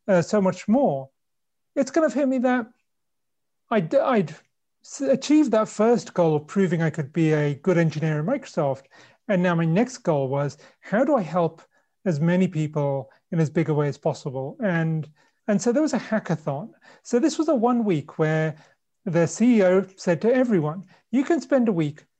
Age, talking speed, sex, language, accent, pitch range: 40-59, 190 wpm, male, English, British, 155-220 Hz